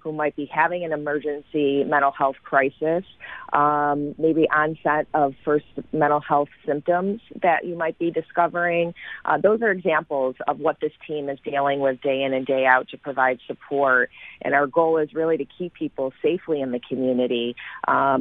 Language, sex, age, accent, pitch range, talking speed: English, female, 30-49, American, 130-150 Hz, 180 wpm